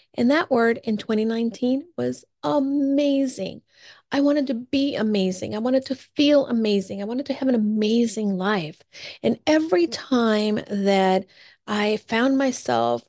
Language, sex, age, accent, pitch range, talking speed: English, female, 40-59, American, 195-250 Hz, 140 wpm